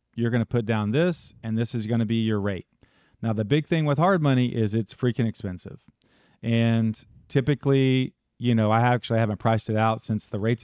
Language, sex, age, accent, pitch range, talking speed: English, male, 40-59, American, 105-130 Hz, 215 wpm